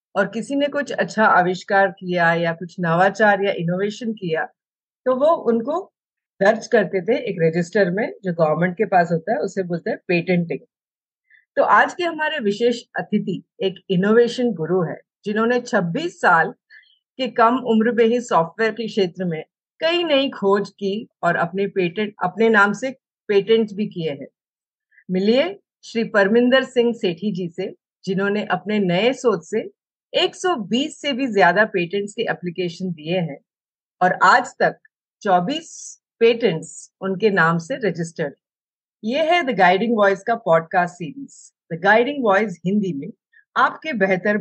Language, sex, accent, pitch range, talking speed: Hindi, female, native, 180-235 Hz, 145 wpm